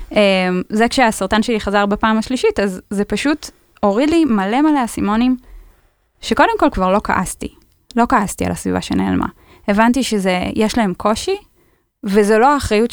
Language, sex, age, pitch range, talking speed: Hebrew, female, 10-29, 190-245 Hz, 150 wpm